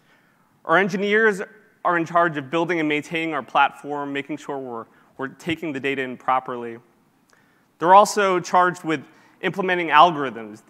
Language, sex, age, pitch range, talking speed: English, male, 20-39, 130-160 Hz, 145 wpm